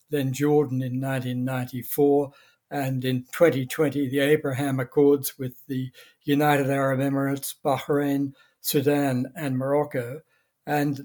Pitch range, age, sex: 130-145 Hz, 60-79, male